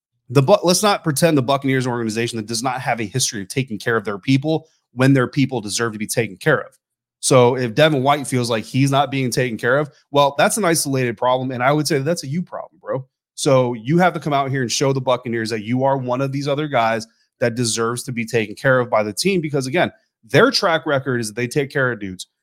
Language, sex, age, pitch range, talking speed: English, male, 30-49, 120-145 Hz, 260 wpm